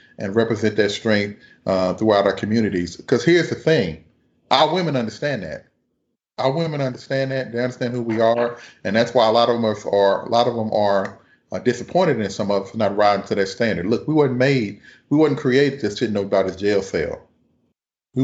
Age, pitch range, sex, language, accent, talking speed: 30-49, 115-145 Hz, male, English, American, 210 wpm